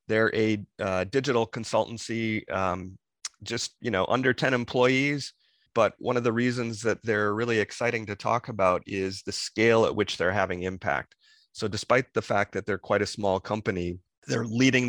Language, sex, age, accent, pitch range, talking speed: English, male, 30-49, American, 95-115 Hz, 175 wpm